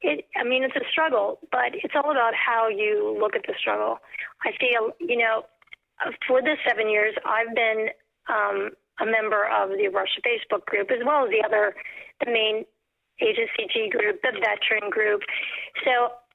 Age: 40-59